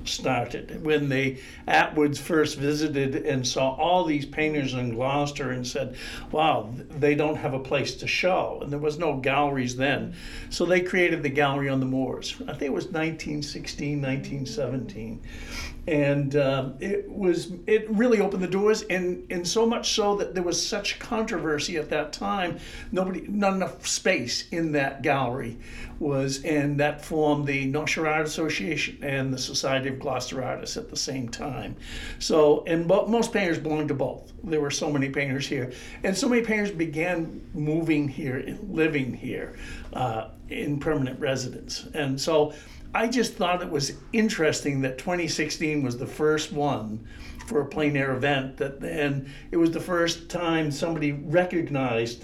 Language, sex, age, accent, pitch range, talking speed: English, male, 60-79, American, 135-170 Hz, 165 wpm